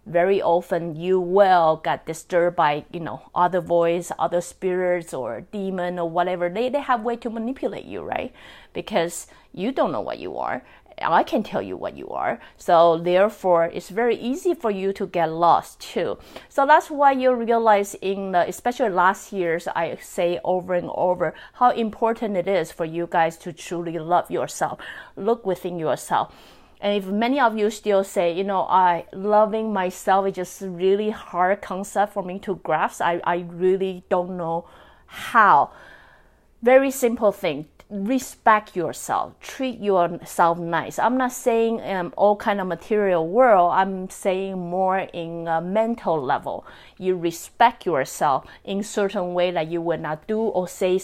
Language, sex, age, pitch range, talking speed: English, female, 30-49, 175-210 Hz, 170 wpm